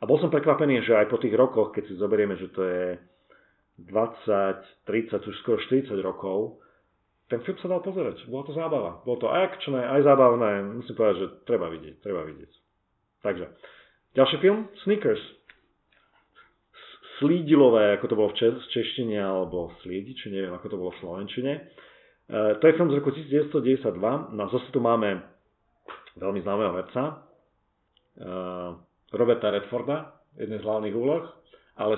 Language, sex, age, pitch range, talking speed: Slovak, male, 40-59, 100-145 Hz, 150 wpm